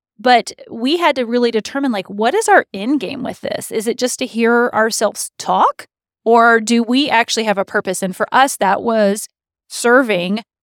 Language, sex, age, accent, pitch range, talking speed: English, female, 30-49, American, 200-245 Hz, 190 wpm